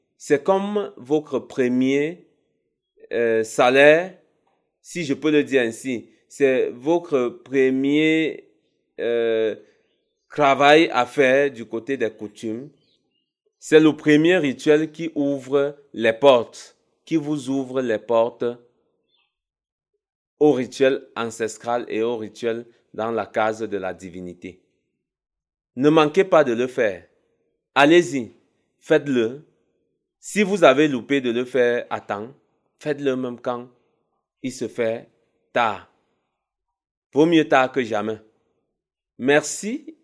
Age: 30-49